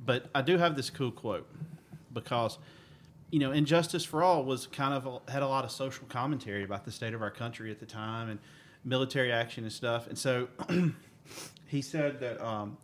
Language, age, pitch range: English, 40-59, 115-145 Hz